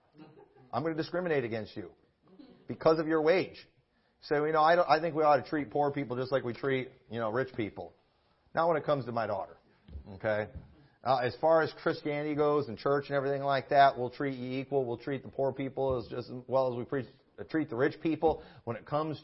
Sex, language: male, English